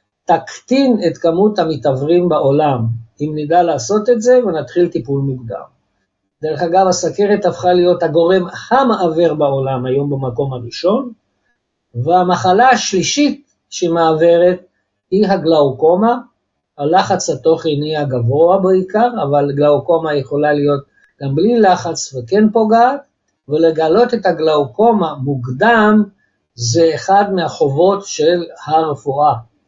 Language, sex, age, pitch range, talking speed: Hebrew, male, 50-69, 145-200 Hz, 105 wpm